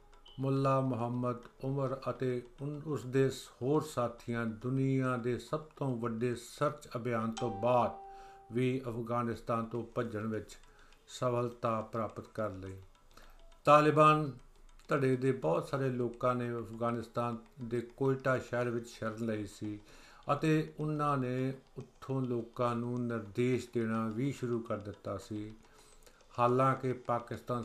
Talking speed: 110 wpm